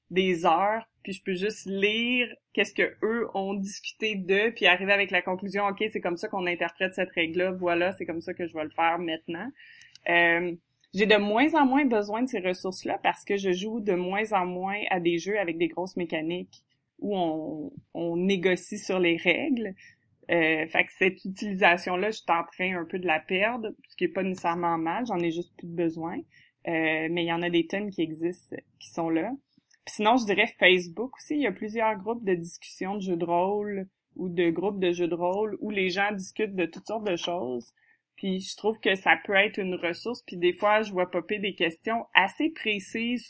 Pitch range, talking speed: 175-205 Hz, 220 wpm